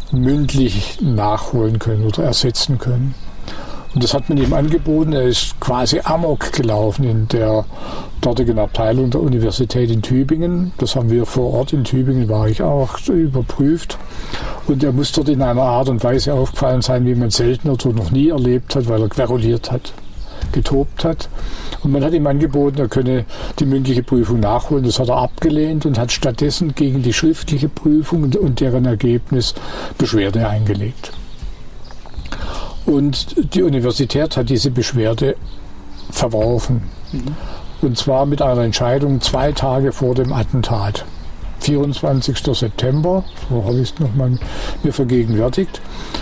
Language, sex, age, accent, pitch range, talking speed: German, male, 60-79, German, 115-140 Hz, 150 wpm